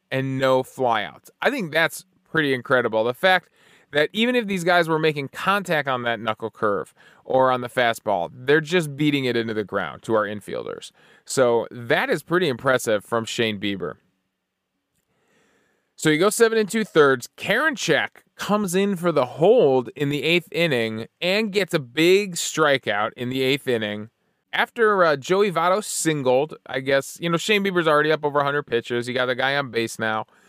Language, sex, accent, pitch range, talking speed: English, male, American, 130-180 Hz, 185 wpm